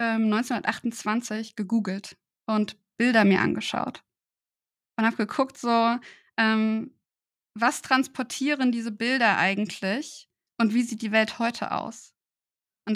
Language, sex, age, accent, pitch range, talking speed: German, female, 20-39, German, 215-255 Hz, 110 wpm